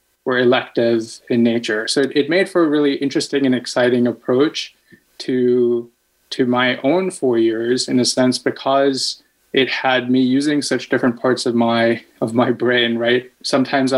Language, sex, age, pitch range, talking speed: English, male, 20-39, 125-140 Hz, 165 wpm